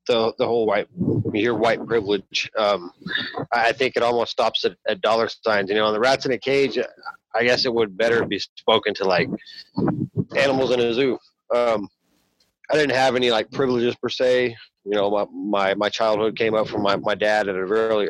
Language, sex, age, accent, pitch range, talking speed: English, male, 30-49, American, 100-125 Hz, 205 wpm